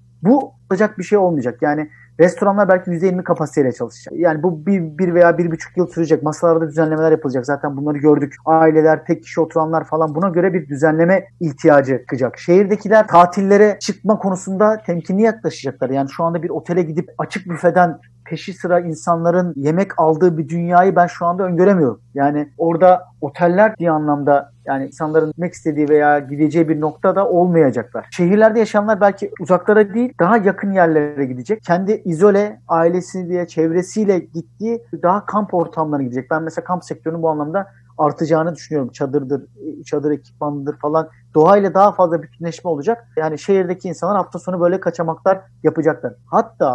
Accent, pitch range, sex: native, 150-185 Hz, male